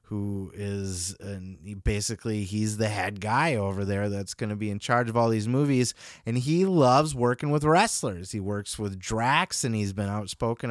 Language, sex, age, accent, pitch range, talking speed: English, male, 30-49, American, 105-150 Hz, 185 wpm